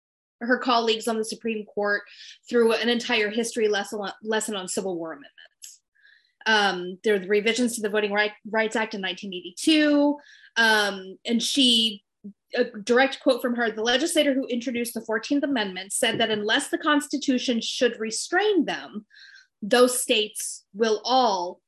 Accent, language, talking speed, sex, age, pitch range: American, English, 145 wpm, female, 20-39, 200-255 Hz